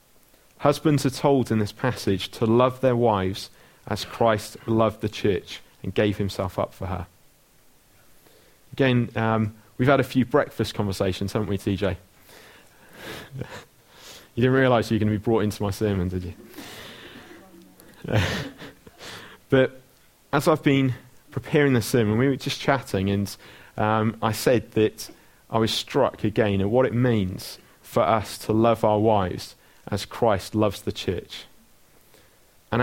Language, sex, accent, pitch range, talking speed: English, male, British, 105-130 Hz, 150 wpm